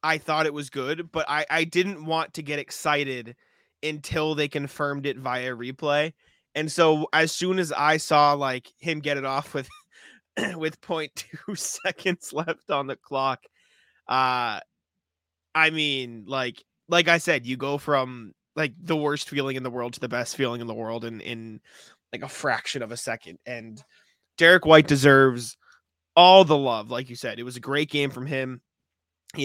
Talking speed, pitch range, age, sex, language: 180 wpm, 125-155 Hz, 20-39, male, English